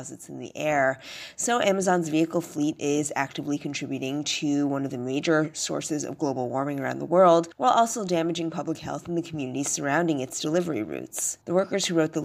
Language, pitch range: English, 140-165 Hz